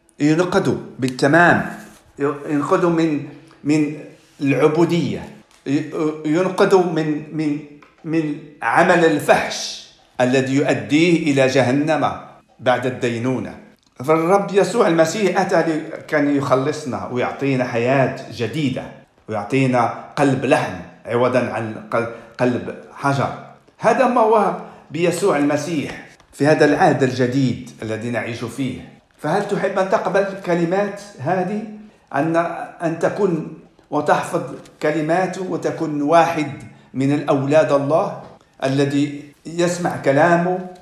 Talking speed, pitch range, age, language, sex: 95 wpm, 130-175 Hz, 50-69, Swedish, male